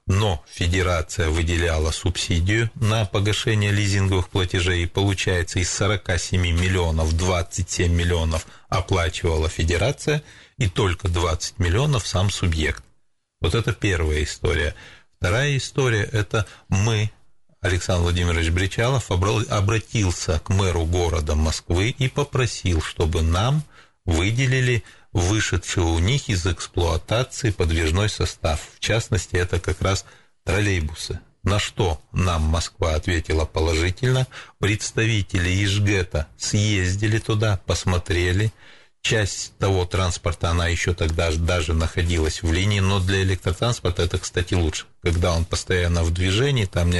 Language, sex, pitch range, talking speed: Russian, male, 85-105 Hz, 115 wpm